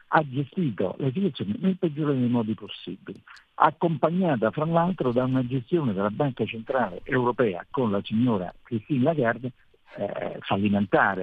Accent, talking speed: native, 135 wpm